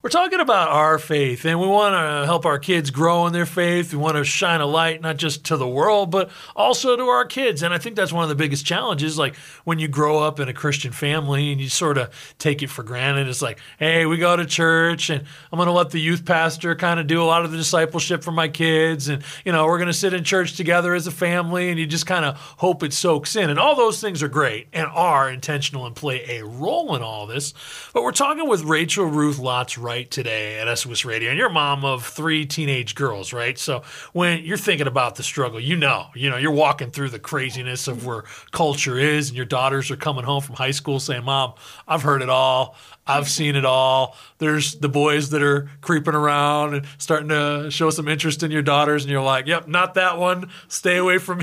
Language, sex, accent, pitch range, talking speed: English, male, American, 140-175 Hz, 240 wpm